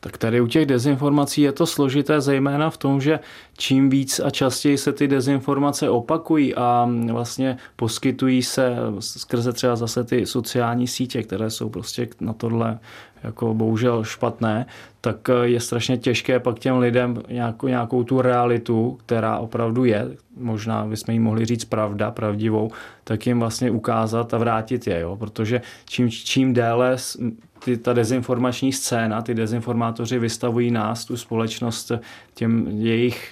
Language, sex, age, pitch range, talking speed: Czech, male, 20-39, 110-125 Hz, 145 wpm